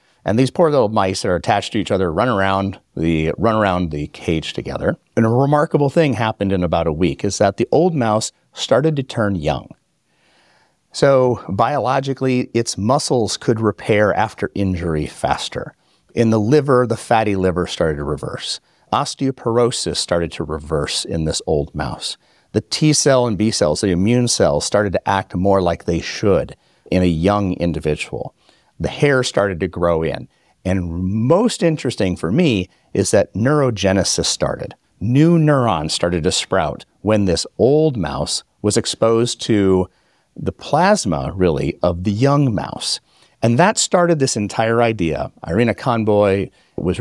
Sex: male